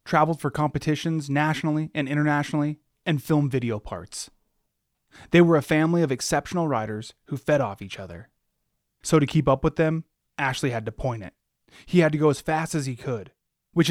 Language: English